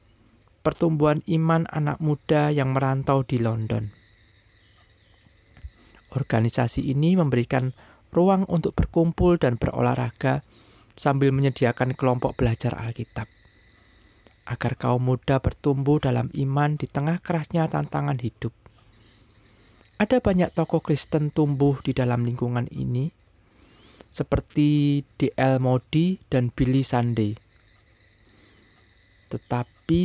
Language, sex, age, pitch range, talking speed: Indonesian, male, 20-39, 115-150 Hz, 95 wpm